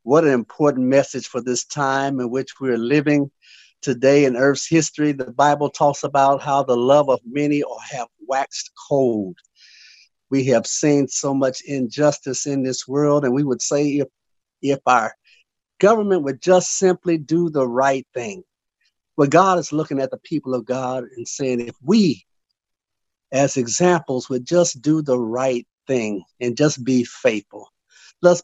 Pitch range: 125-150 Hz